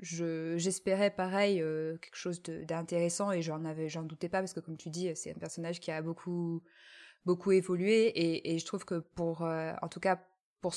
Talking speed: 210 wpm